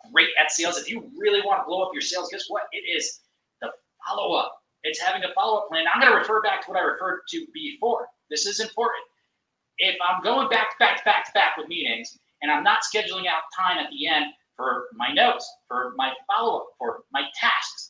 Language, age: English, 30-49